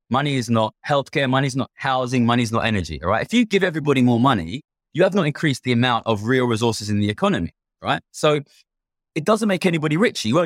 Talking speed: 225 wpm